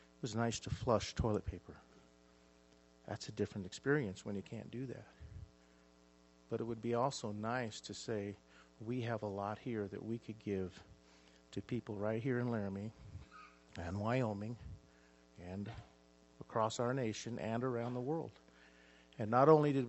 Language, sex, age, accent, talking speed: English, male, 50-69, American, 160 wpm